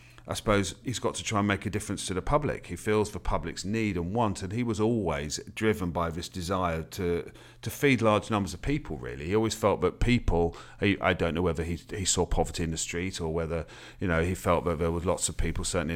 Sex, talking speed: male, 250 wpm